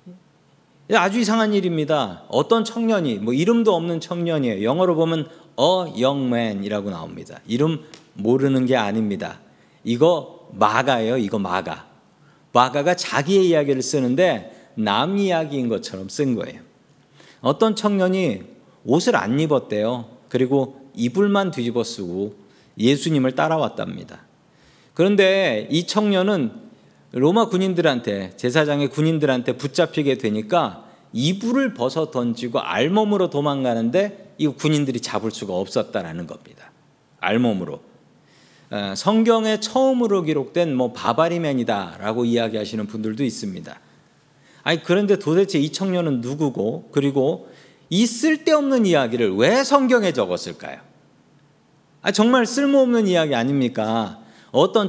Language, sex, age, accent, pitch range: Korean, male, 40-59, native, 125-195 Hz